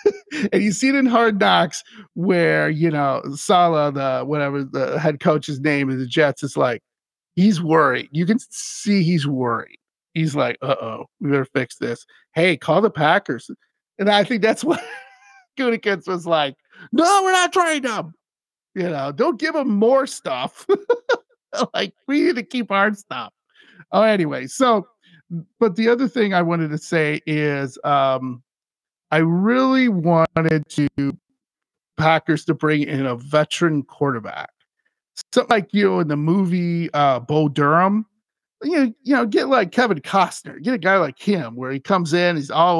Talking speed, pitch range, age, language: 170 wpm, 150-215 Hz, 50-69, English